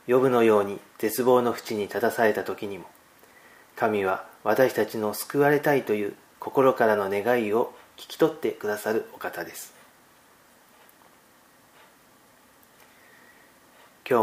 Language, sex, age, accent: Japanese, male, 40-59, native